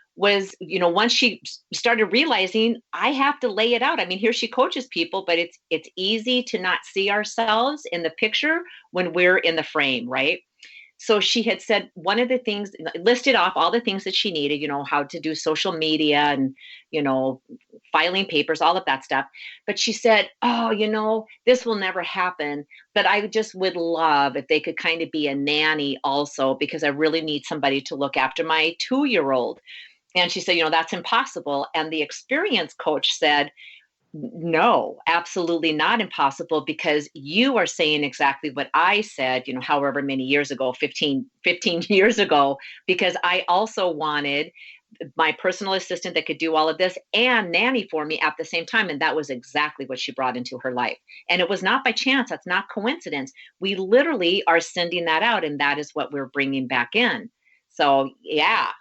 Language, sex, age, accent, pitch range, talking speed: English, female, 40-59, American, 150-215 Hz, 195 wpm